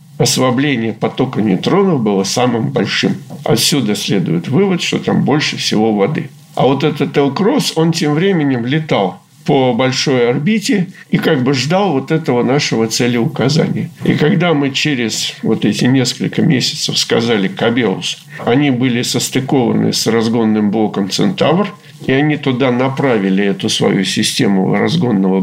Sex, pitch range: male, 120-160 Hz